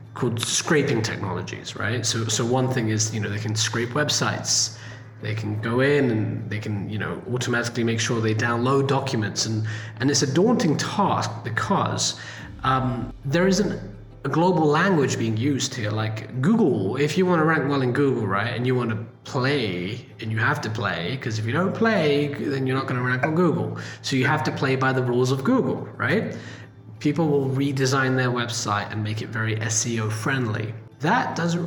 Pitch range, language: 110-140 Hz, English